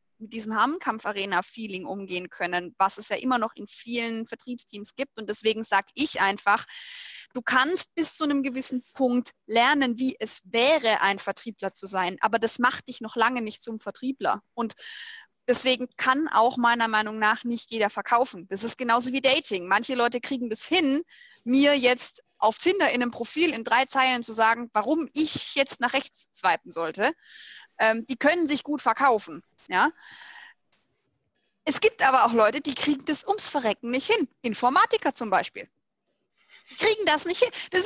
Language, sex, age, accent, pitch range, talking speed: German, female, 20-39, German, 220-295 Hz, 175 wpm